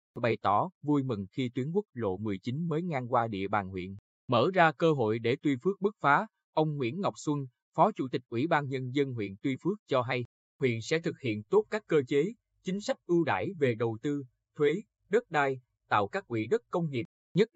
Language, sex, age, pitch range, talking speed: Vietnamese, male, 20-39, 120-155 Hz, 220 wpm